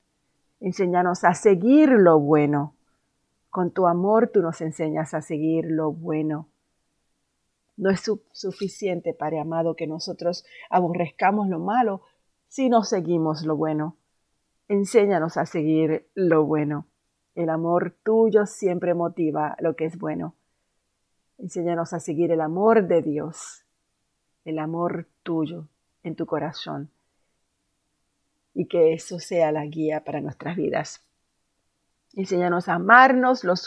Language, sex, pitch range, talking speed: Spanish, female, 155-190 Hz, 125 wpm